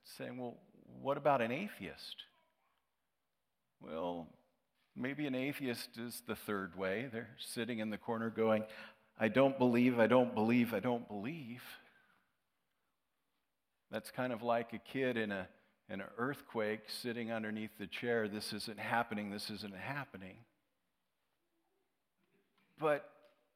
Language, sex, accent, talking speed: English, male, American, 130 wpm